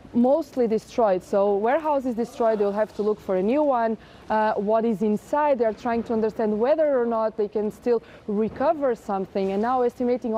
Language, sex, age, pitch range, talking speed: English, female, 20-39, 195-230 Hz, 185 wpm